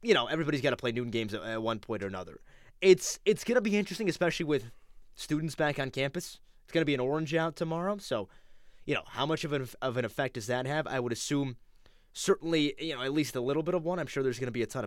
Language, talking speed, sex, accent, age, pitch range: English, 270 wpm, male, American, 20-39, 125-165 Hz